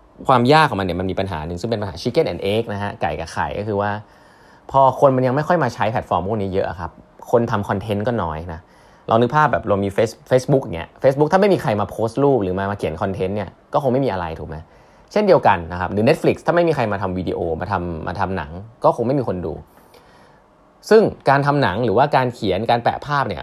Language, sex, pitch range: Thai, male, 95-135 Hz